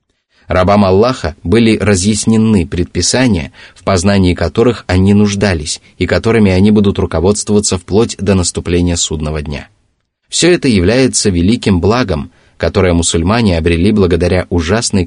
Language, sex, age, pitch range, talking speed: Russian, male, 30-49, 90-110 Hz, 120 wpm